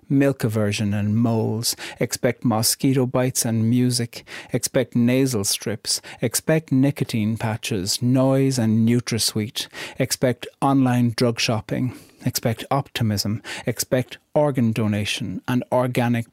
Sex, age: male, 60-79